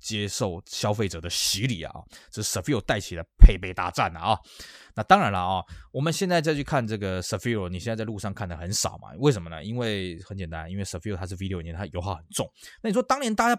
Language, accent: Chinese, native